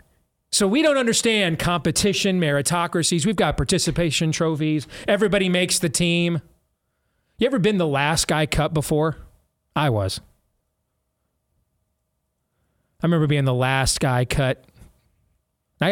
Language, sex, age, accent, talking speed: English, male, 30-49, American, 120 wpm